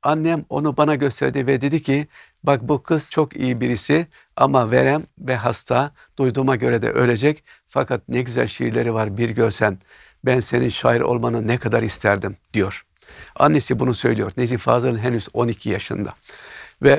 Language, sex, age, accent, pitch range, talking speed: Turkish, male, 60-79, native, 115-135 Hz, 160 wpm